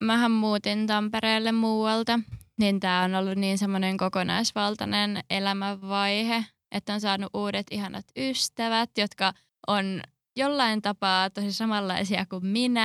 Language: Finnish